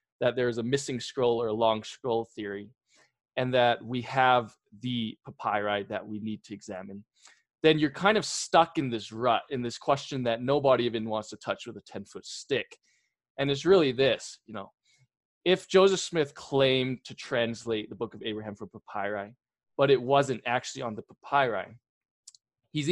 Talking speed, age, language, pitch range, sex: 185 wpm, 20-39, English, 115-140 Hz, male